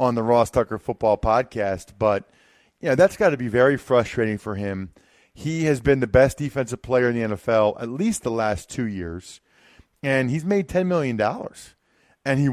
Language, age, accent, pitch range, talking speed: English, 40-59, American, 110-145 Hz, 185 wpm